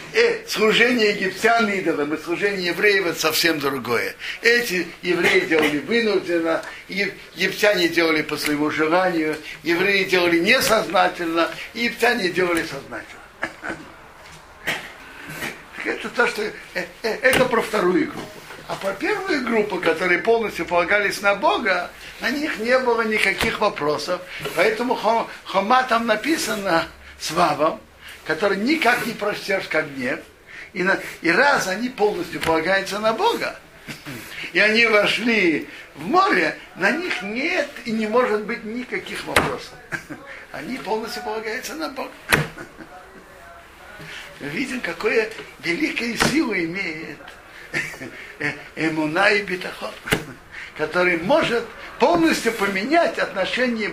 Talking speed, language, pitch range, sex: 105 wpm, Russian, 175-240 Hz, male